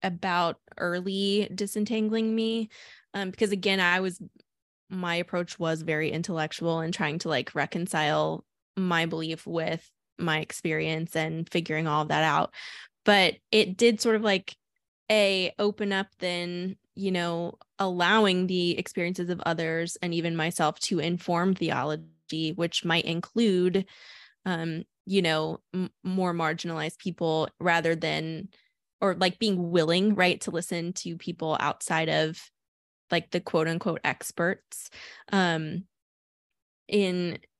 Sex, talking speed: female, 130 wpm